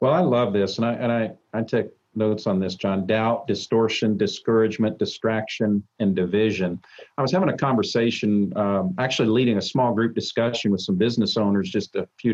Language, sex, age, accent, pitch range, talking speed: English, male, 50-69, American, 110-130 Hz, 190 wpm